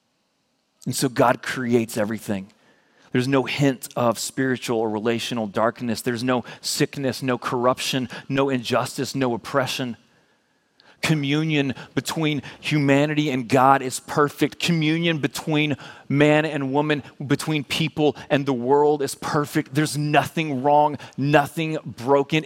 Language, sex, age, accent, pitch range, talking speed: English, male, 30-49, American, 140-175 Hz, 125 wpm